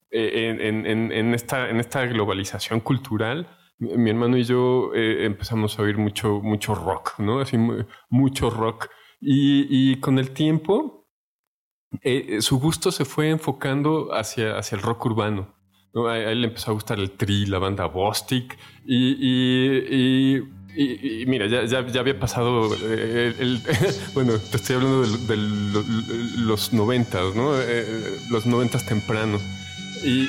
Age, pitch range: 20-39, 105-135 Hz